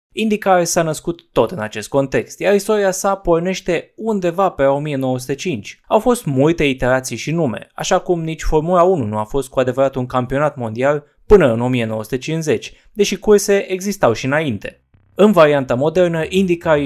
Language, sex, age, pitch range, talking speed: Romanian, male, 20-39, 130-180 Hz, 160 wpm